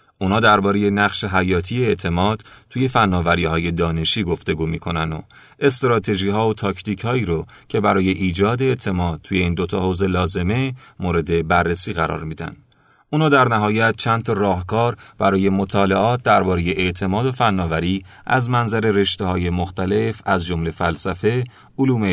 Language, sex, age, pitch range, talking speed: Persian, male, 30-49, 90-120 Hz, 130 wpm